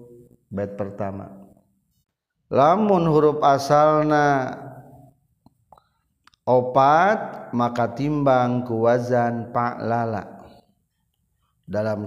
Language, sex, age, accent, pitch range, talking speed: Indonesian, male, 40-59, native, 120-150 Hz, 60 wpm